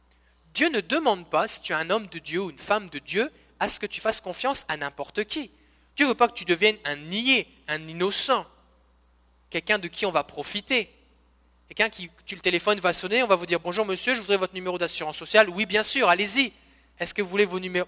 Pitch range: 160-235 Hz